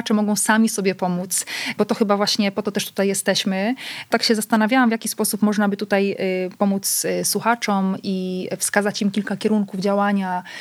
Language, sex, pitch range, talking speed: Polish, female, 190-225 Hz, 175 wpm